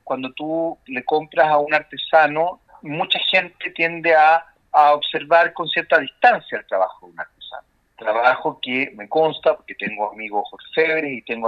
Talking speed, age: 155 wpm, 50-69